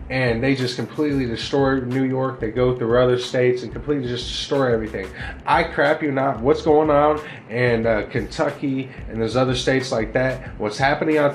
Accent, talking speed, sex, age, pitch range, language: American, 190 wpm, male, 20-39, 115-140 Hz, English